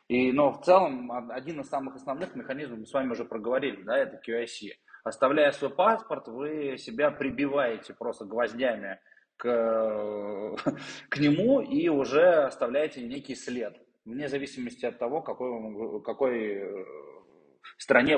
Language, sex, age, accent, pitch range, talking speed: Russian, male, 20-39, native, 125-195 Hz, 130 wpm